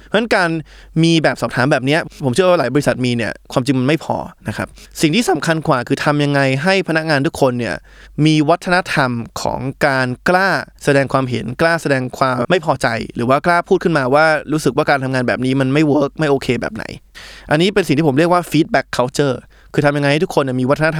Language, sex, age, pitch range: Thai, male, 20-39, 130-160 Hz